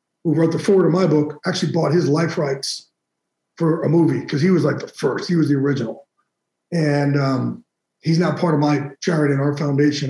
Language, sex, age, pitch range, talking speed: English, male, 50-69, 150-190 Hz, 215 wpm